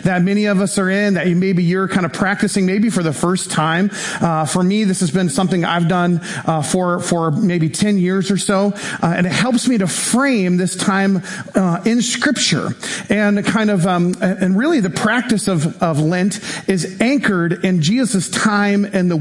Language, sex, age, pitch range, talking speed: English, male, 40-59, 170-210 Hz, 200 wpm